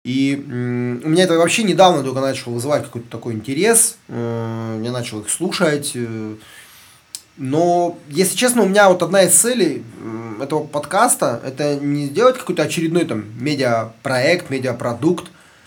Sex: male